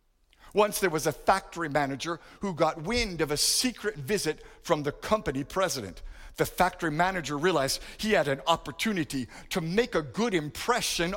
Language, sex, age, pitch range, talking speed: English, male, 50-69, 165-220 Hz, 160 wpm